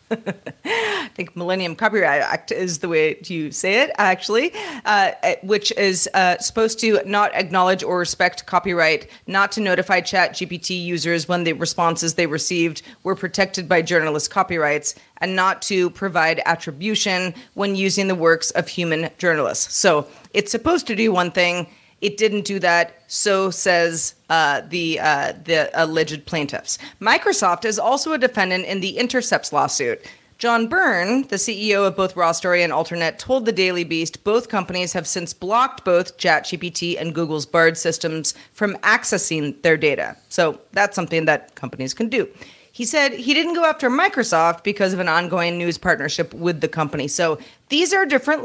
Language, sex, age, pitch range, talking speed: English, female, 30-49, 170-210 Hz, 165 wpm